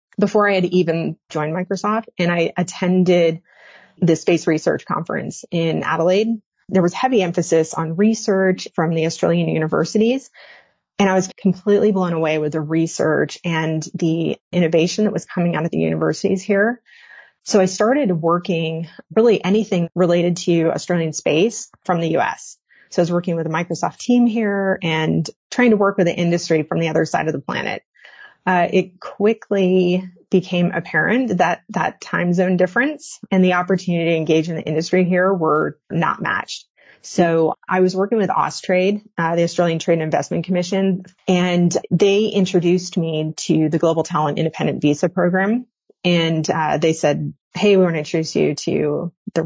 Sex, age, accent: female, 30-49, American